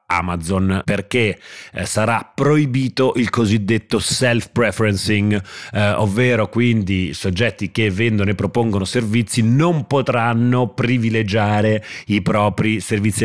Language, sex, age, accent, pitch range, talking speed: Italian, male, 30-49, native, 100-120 Hz, 95 wpm